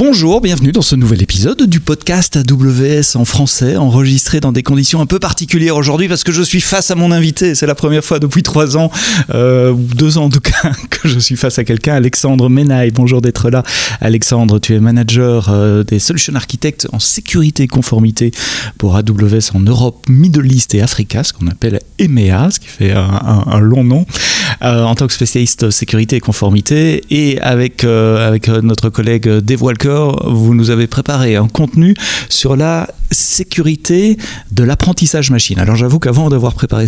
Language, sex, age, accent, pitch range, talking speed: French, male, 30-49, French, 115-150 Hz, 190 wpm